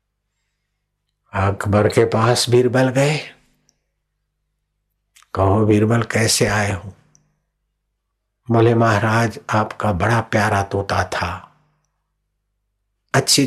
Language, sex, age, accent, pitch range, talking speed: Hindi, male, 60-79, native, 95-125 Hz, 80 wpm